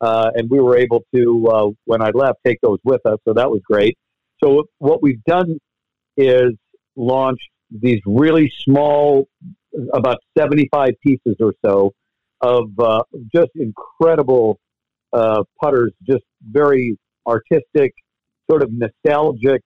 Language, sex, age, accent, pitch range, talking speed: English, male, 50-69, American, 115-140 Hz, 135 wpm